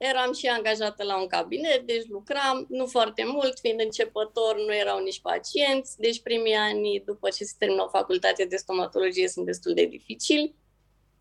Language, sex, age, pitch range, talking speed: Romanian, female, 20-39, 185-250 Hz, 170 wpm